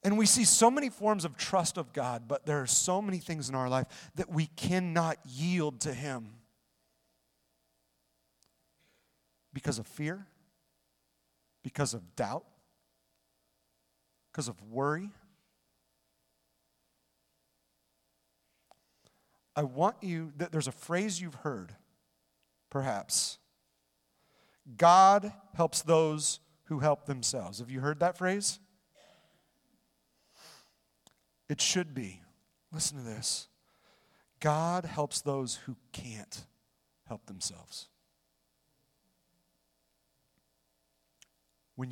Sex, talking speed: male, 100 wpm